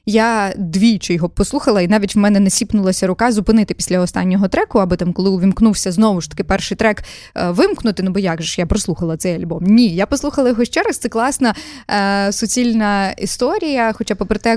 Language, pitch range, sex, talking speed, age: Ukrainian, 190-225 Hz, female, 195 wpm, 20-39